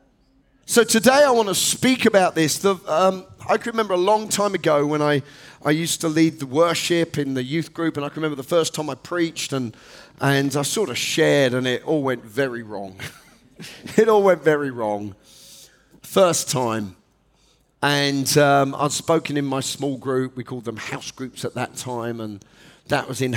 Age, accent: 40-59, British